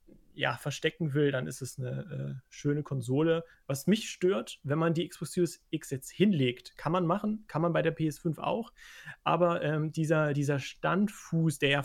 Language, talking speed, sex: German, 185 wpm, male